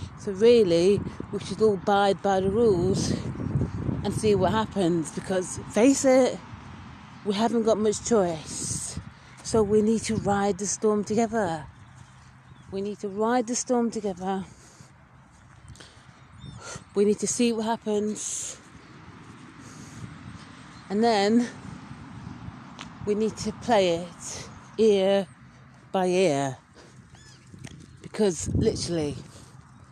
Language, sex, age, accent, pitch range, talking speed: English, female, 40-59, British, 165-220 Hz, 110 wpm